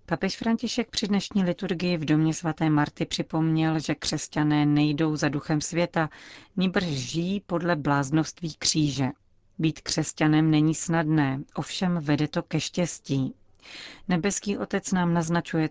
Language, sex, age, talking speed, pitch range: Czech, female, 40-59, 130 wpm, 145-170 Hz